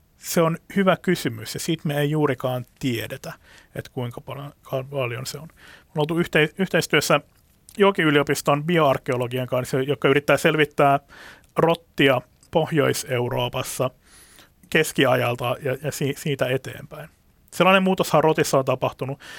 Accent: native